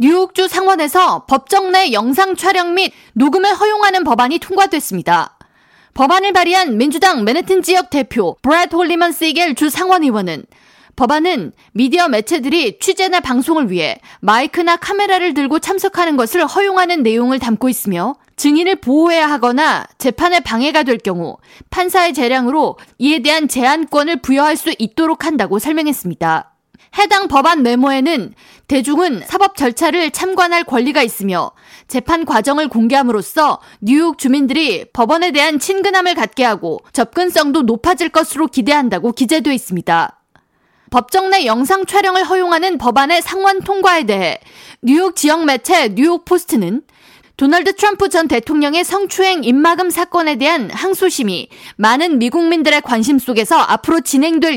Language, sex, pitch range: Korean, female, 255-360 Hz